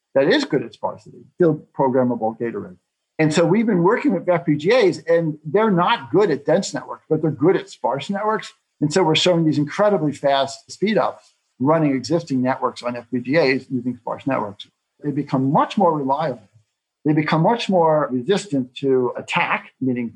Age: 50-69